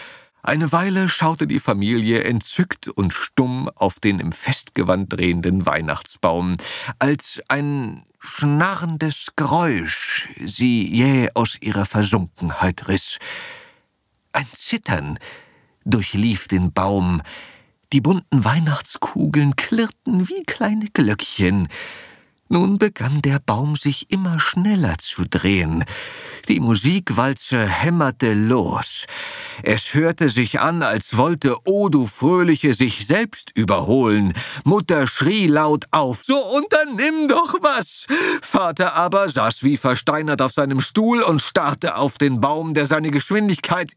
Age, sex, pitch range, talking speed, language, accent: 50-69, male, 120-190 Hz, 115 wpm, German, German